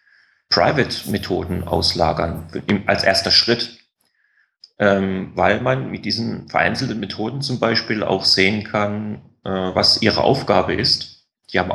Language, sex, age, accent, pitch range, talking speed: German, male, 30-49, German, 95-125 Hz, 130 wpm